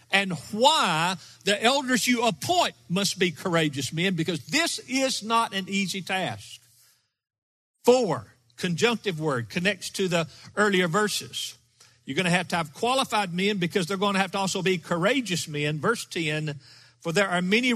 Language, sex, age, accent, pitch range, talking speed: English, male, 50-69, American, 150-225 Hz, 165 wpm